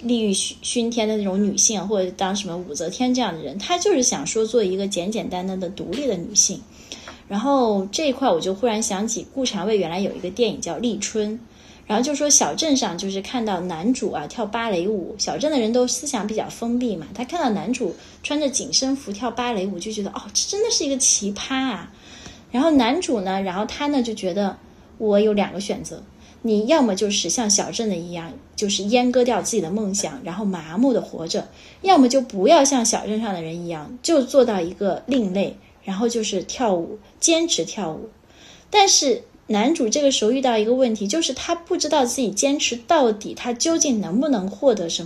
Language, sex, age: Chinese, female, 20-39